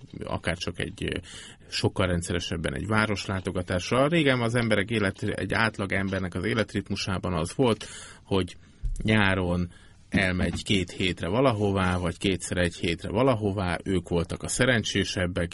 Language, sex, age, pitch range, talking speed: Hungarian, male, 30-49, 85-100 Hz, 125 wpm